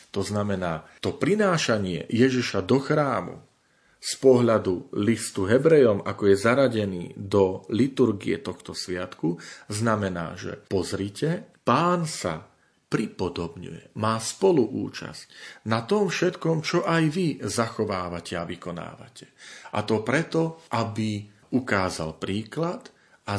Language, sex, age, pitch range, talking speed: Slovak, male, 40-59, 95-130 Hz, 110 wpm